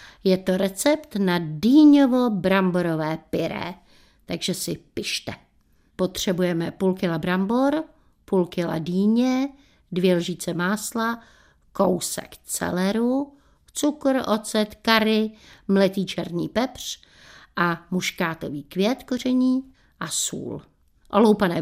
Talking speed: 95 wpm